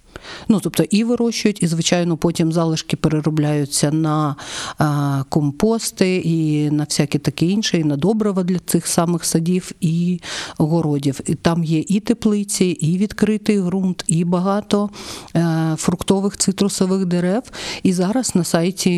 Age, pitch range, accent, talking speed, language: 50-69, 155-185 Hz, native, 140 wpm, Ukrainian